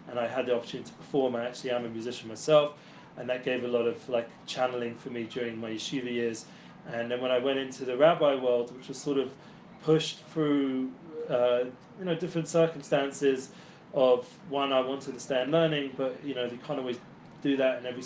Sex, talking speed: male, 215 wpm